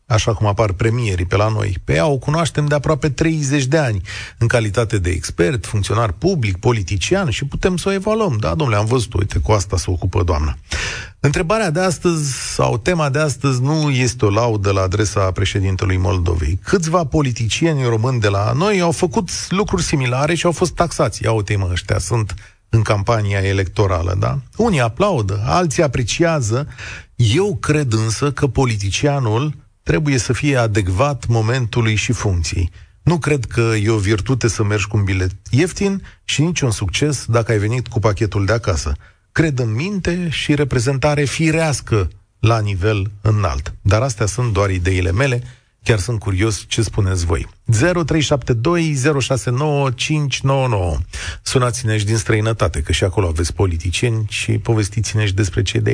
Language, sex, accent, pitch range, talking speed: Romanian, male, native, 100-145 Hz, 160 wpm